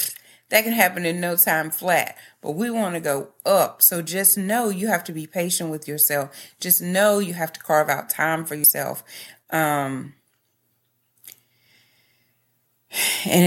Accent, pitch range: American, 145-215 Hz